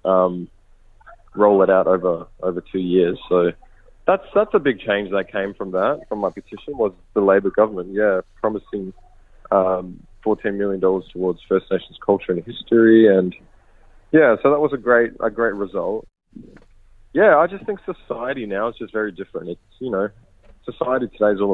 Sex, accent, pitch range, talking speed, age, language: male, Australian, 95-115 Hz, 180 wpm, 20-39, English